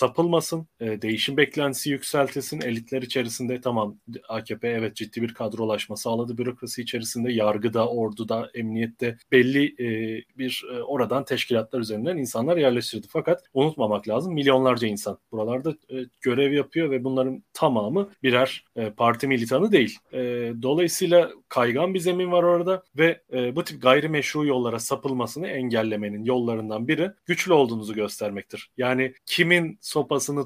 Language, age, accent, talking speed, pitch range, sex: Turkish, 30-49, native, 120 wpm, 110-140 Hz, male